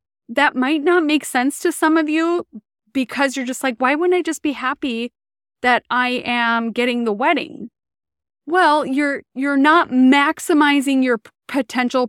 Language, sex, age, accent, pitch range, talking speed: English, female, 20-39, American, 225-280 Hz, 165 wpm